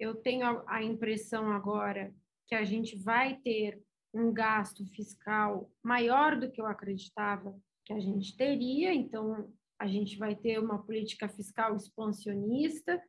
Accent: Brazilian